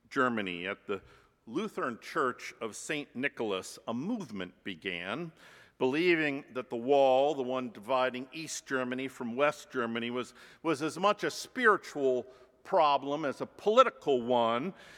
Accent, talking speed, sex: American, 135 wpm, male